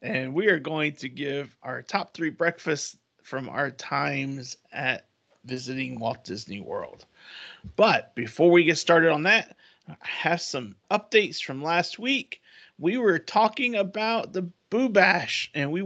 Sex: male